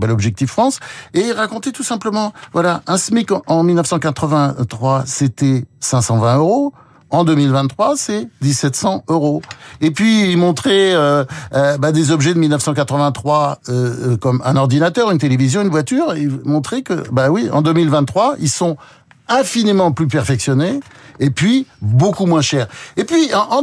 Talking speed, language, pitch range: 150 wpm, French, 125-175 Hz